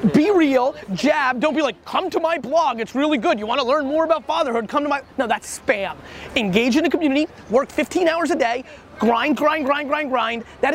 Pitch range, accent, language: 245-310 Hz, American, English